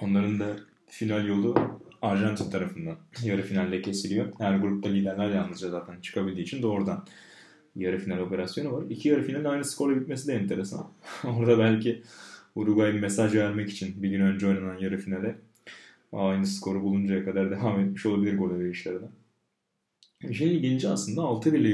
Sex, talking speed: male, 155 wpm